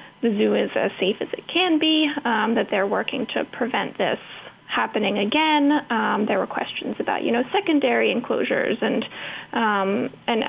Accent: American